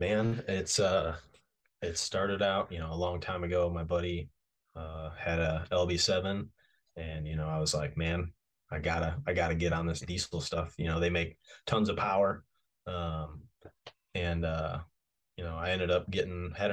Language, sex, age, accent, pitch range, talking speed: English, male, 20-39, American, 80-90 Hz, 185 wpm